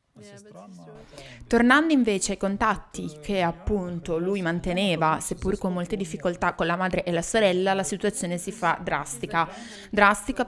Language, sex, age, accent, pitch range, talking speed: Italian, female, 20-39, native, 165-195 Hz, 140 wpm